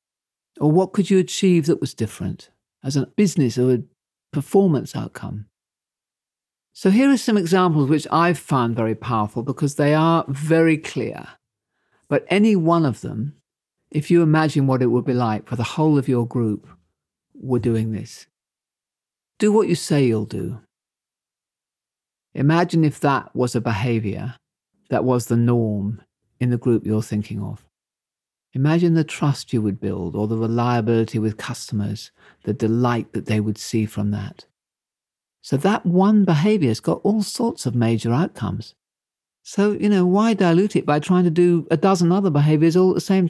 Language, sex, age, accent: English, male, 50-69, British